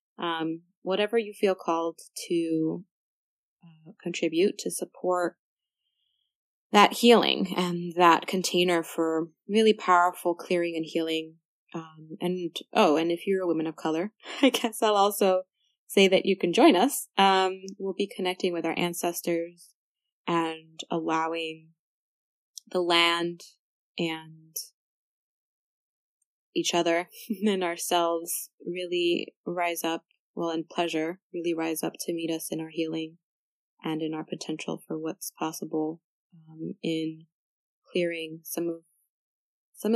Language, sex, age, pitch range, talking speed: English, female, 20-39, 165-195 Hz, 130 wpm